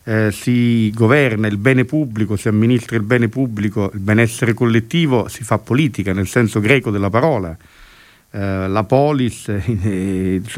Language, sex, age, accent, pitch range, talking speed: Italian, male, 50-69, native, 105-135 Hz, 145 wpm